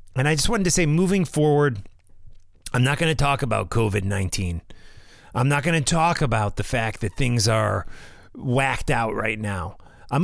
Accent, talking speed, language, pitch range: American, 180 wpm, English, 110-160 Hz